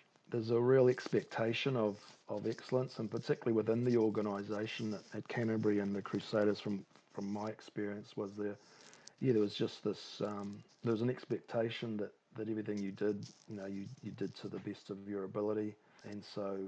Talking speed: 185 wpm